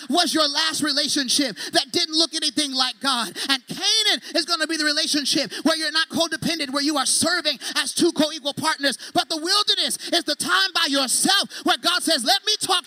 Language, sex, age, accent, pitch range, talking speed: English, male, 30-49, American, 300-360 Hz, 205 wpm